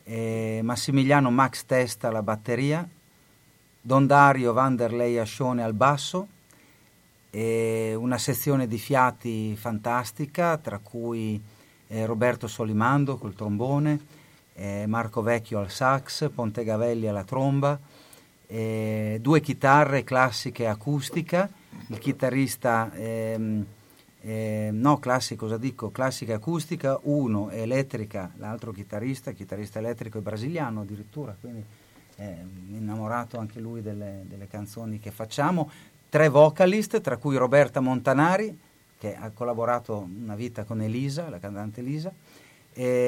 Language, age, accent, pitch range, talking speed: Italian, 40-59, native, 110-140 Hz, 115 wpm